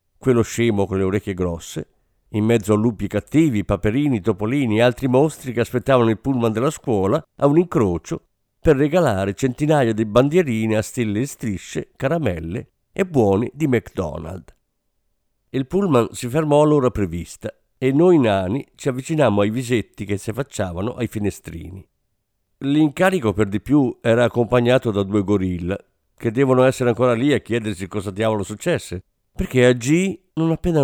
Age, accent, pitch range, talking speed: 50-69, native, 100-145 Hz, 155 wpm